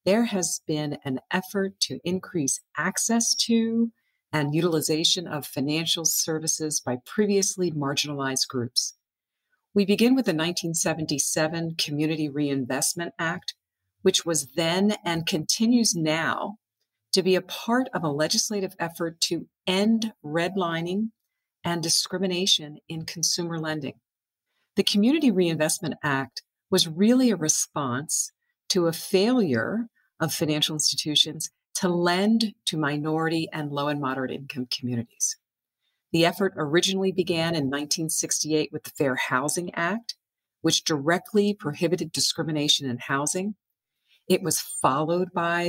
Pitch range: 150-190 Hz